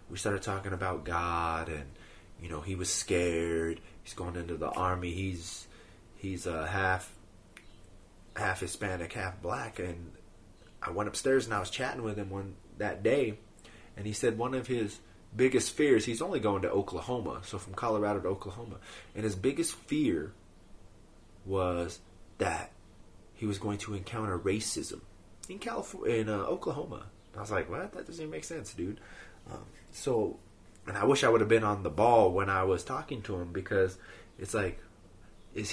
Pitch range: 90-115 Hz